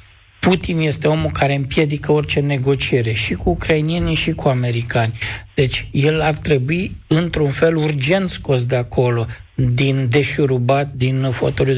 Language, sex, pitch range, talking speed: Romanian, male, 135-175 Hz, 140 wpm